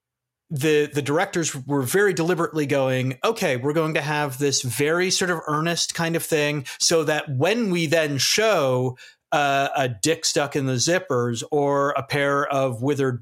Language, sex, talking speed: English, male, 175 wpm